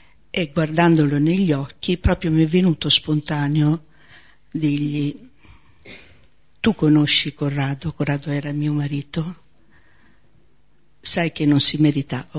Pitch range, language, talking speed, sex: 150-170 Hz, Italian, 105 wpm, female